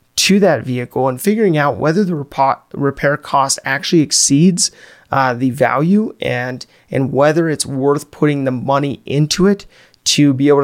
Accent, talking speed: American, 160 wpm